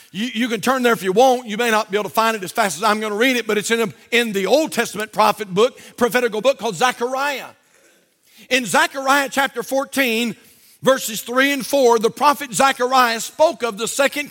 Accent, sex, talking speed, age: American, male, 215 wpm, 50-69